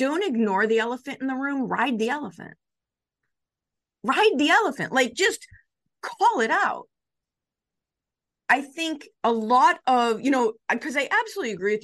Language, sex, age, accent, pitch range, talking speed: English, female, 30-49, American, 200-270 Hz, 150 wpm